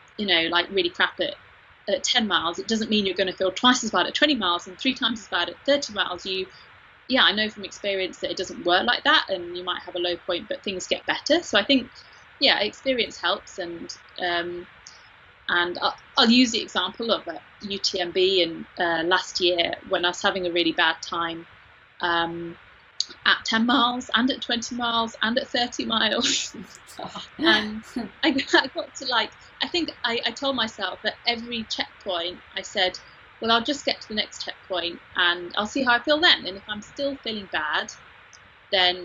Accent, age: British, 30-49